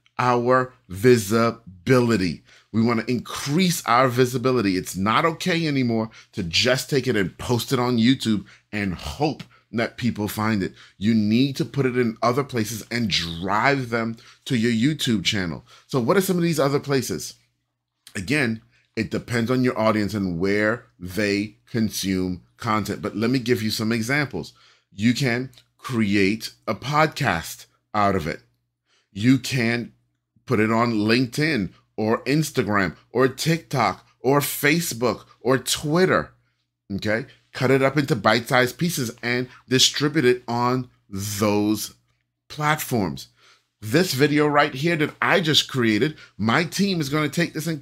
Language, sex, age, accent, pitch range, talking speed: English, male, 30-49, American, 105-145 Hz, 150 wpm